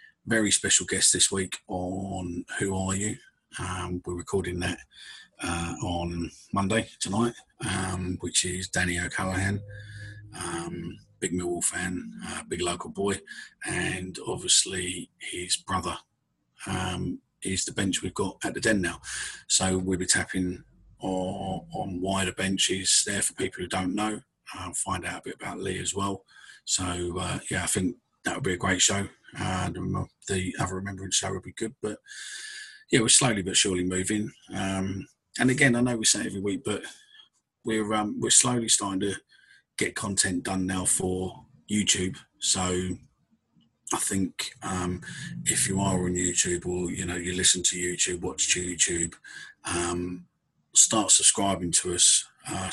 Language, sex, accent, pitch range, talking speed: English, male, British, 90-100 Hz, 160 wpm